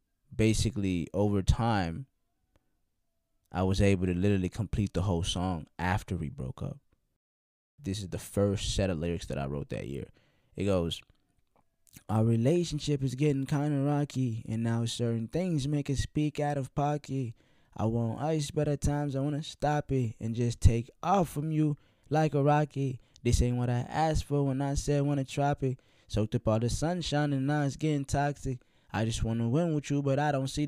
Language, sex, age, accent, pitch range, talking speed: English, male, 20-39, American, 100-140 Hz, 200 wpm